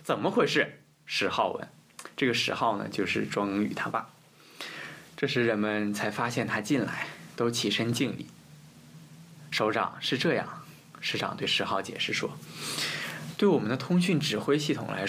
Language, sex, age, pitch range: Chinese, male, 20-39, 110-160 Hz